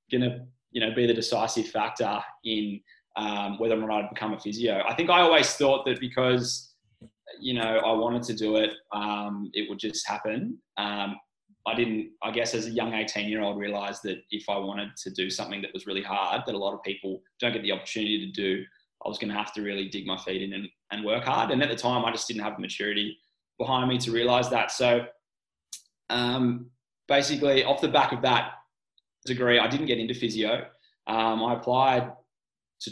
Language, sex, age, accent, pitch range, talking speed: English, male, 20-39, Australian, 105-125 Hz, 215 wpm